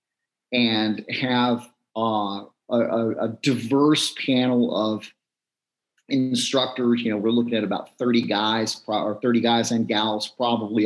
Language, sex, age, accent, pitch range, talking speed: English, male, 40-59, American, 110-125 Hz, 135 wpm